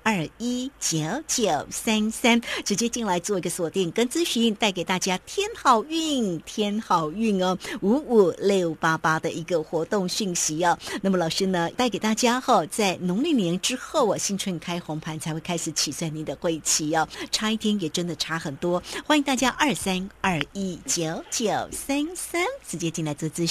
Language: Chinese